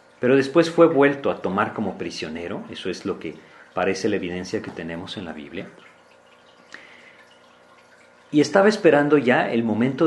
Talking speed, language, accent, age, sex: 155 wpm, Spanish, Mexican, 40-59, male